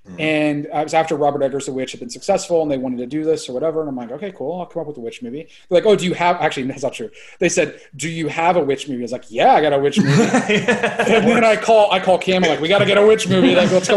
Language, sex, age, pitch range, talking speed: English, male, 30-49, 135-190 Hz, 325 wpm